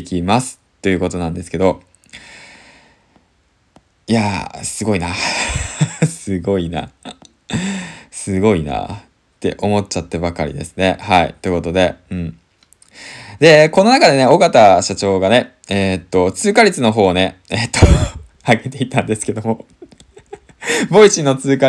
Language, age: Japanese, 20-39